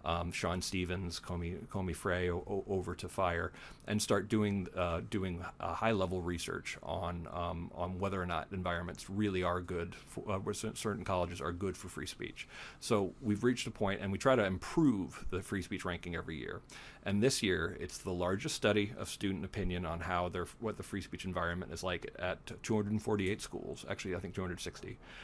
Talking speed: 195 wpm